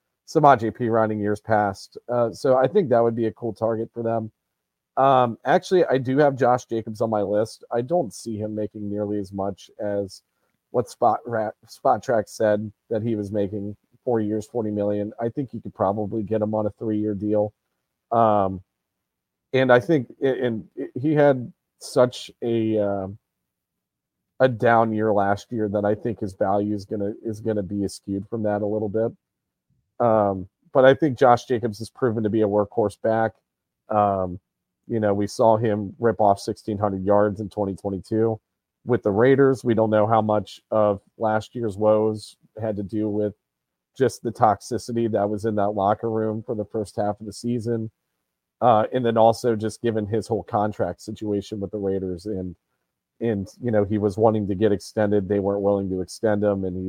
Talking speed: 190 wpm